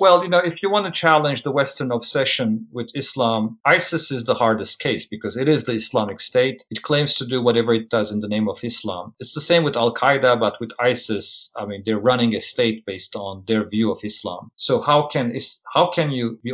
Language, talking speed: English, 230 wpm